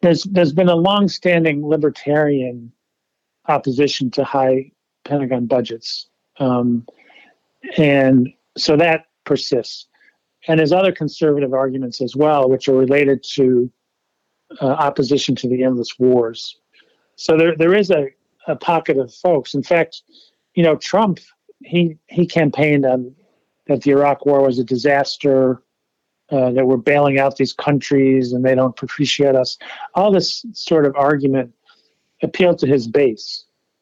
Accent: American